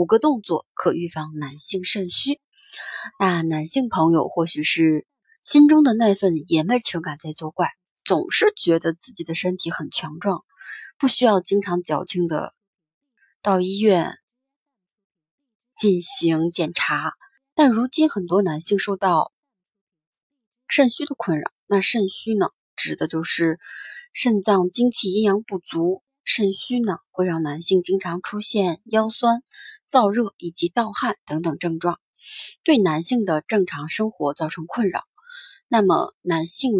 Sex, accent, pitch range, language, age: female, native, 170-245 Hz, Chinese, 20-39